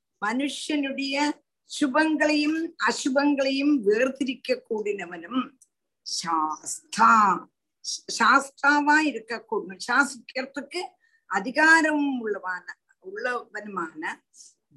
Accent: native